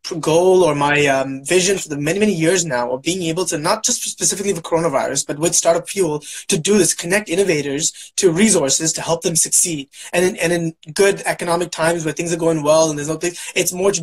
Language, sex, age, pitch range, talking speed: English, male, 20-39, 160-185 Hz, 230 wpm